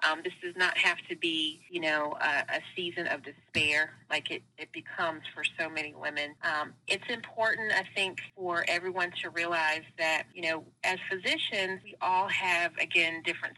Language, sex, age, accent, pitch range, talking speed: English, female, 30-49, American, 160-195 Hz, 180 wpm